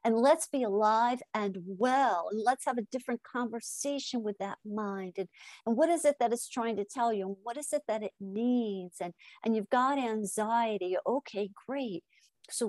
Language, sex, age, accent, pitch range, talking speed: English, female, 50-69, American, 195-245 Hz, 190 wpm